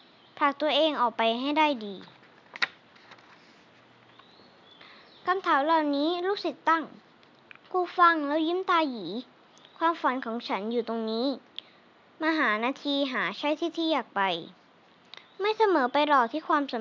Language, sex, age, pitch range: Thai, male, 20-39, 240-325 Hz